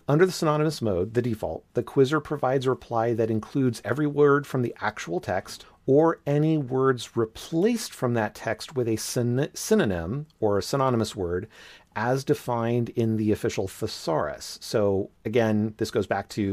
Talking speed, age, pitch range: 165 wpm, 40-59, 105-130 Hz